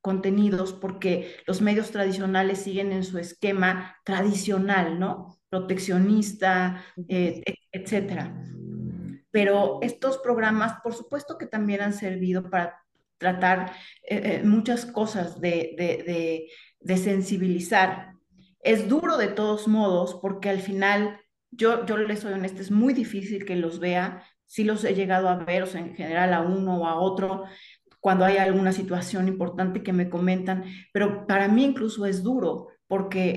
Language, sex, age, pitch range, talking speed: Spanish, female, 40-59, 185-220 Hz, 150 wpm